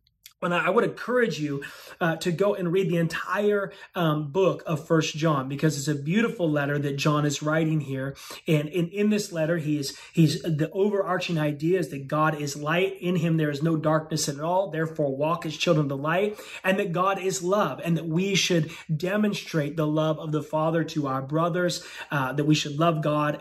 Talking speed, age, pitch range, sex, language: 210 wpm, 30-49, 150-195 Hz, male, English